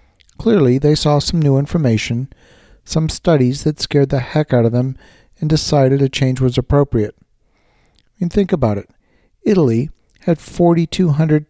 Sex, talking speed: male, 150 wpm